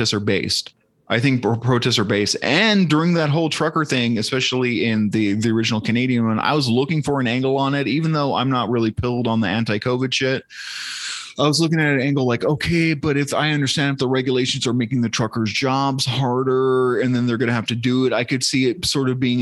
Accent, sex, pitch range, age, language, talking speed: American, male, 115-135 Hz, 30-49, English, 230 wpm